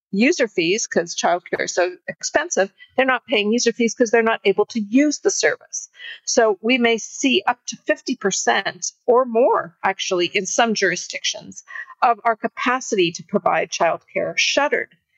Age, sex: 50-69, female